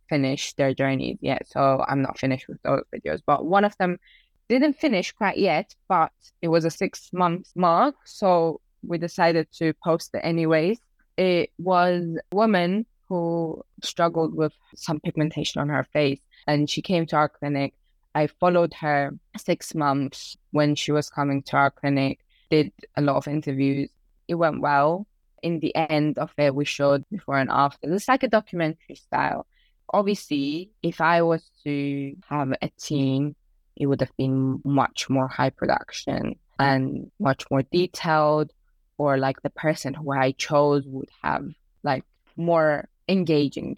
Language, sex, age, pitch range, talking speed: English, female, 20-39, 145-180 Hz, 160 wpm